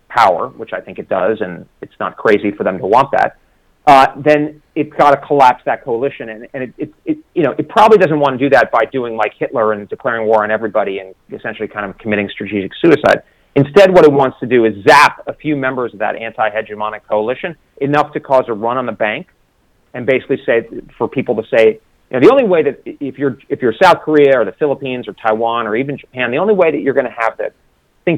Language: English